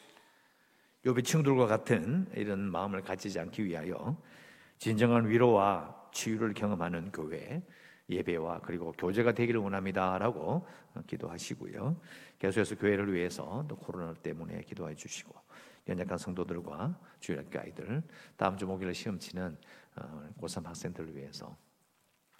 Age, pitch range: 50-69, 85-110 Hz